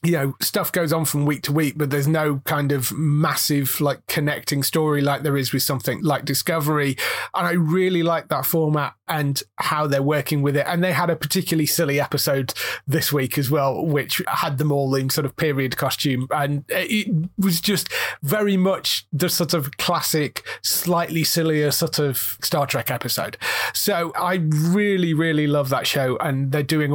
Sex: male